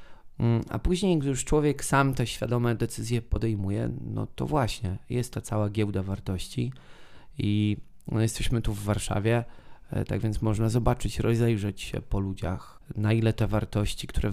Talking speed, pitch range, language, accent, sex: 150 wpm, 100-120 Hz, Polish, native, male